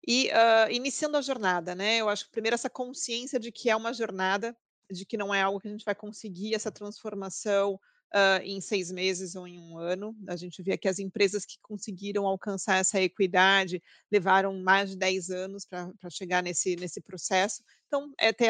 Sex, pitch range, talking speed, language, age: female, 195-235 Hz, 200 wpm, Portuguese, 40-59